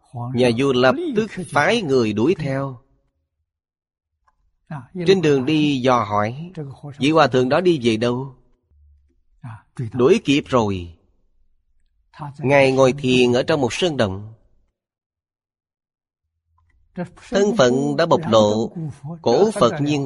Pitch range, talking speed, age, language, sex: 105-150 Hz, 115 wpm, 30-49, Vietnamese, male